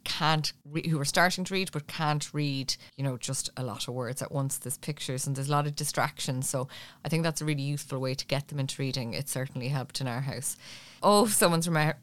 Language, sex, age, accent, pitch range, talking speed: English, female, 20-39, Irish, 145-170 Hz, 240 wpm